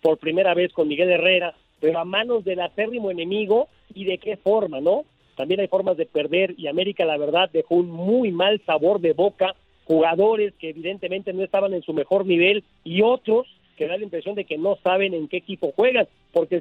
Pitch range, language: 175-225 Hz, Spanish